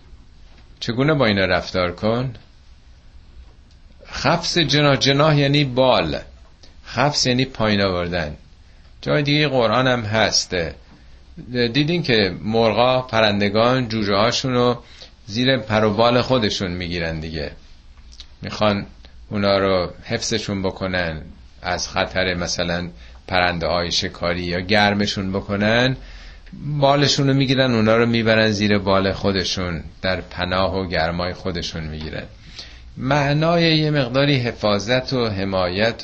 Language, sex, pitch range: Persian, male, 80-120 Hz